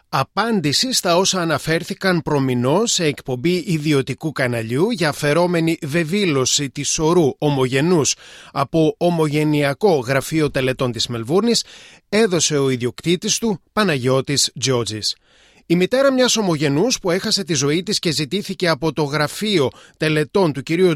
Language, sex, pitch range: Greek, male, 135-185 Hz